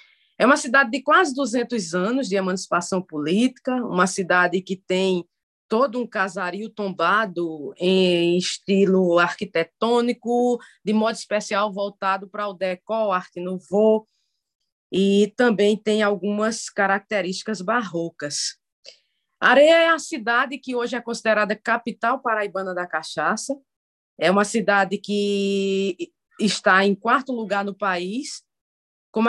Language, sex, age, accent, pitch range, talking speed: Portuguese, female, 20-39, Brazilian, 190-245 Hz, 120 wpm